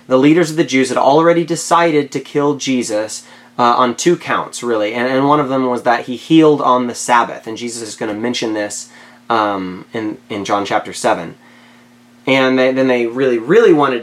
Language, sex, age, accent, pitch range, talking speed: English, male, 30-49, American, 120-160 Hz, 205 wpm